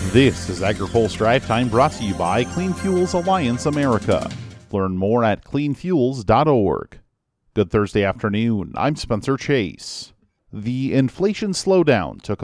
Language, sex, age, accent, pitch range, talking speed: English, male, 40-59, American, 105-135 Hz, 130 wpm